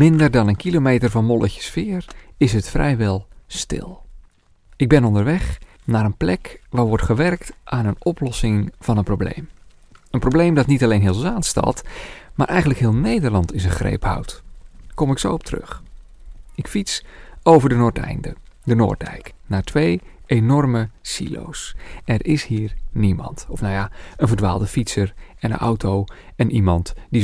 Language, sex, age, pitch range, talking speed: Dutch, male, 40-59, 100-145 Hz, 160 wpm